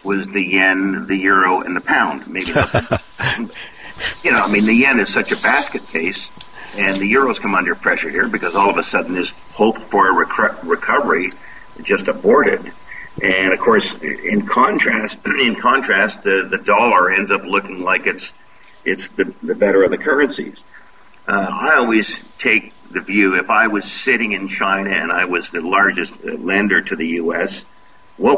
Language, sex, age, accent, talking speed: English, male, 50-69, American, 180 wpm